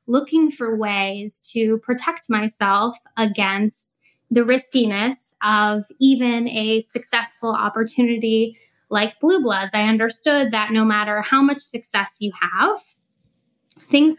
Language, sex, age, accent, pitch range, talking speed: English, female, 10-29, American, 210-245 Hz, 120 wpm